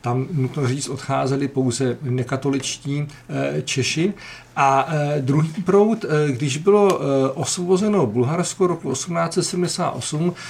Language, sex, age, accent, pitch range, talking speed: Czech, male, 50-69, native, 130-165 Hz, 90 wpm